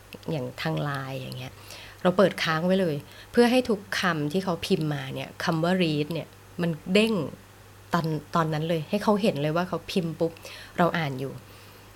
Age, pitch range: 20-39, 145-190 Hz